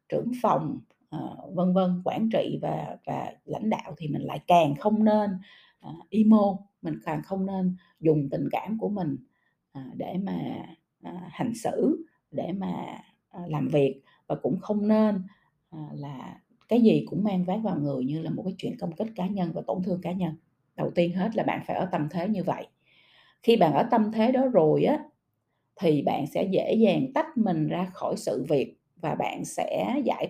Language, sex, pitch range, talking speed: Vietnamese, female, 175-220 Hz, 185 wpm